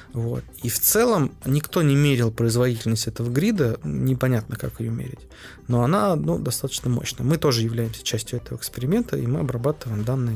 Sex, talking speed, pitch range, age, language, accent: male, 160 wpm, 115-130 Hz, 20-39, Russian, native